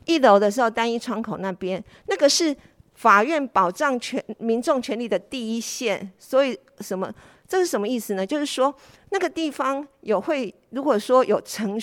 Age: 50-69